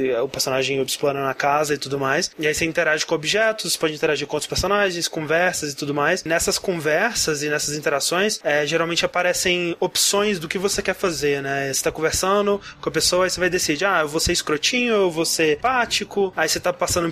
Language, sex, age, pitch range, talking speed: Portuguese, male, 20-39, 155-190 Hz, 215 wpm